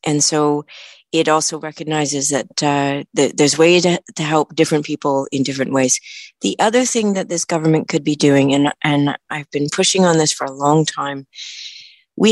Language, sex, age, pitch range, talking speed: English, female, 40-59, 140-175 Hz, 190 wpm